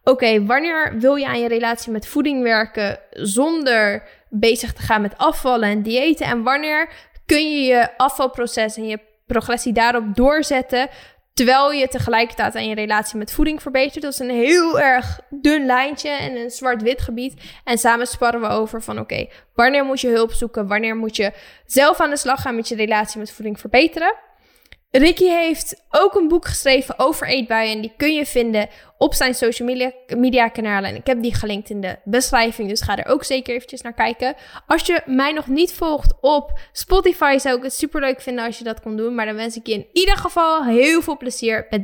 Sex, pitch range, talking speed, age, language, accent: female, 230-305 Hz, 200 wpm, 10-29, Dutch, Dutch